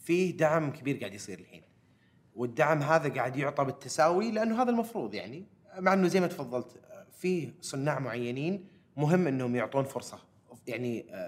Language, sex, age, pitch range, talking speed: Arabic, male, 30-49, 120-155 Hz, 150 wpm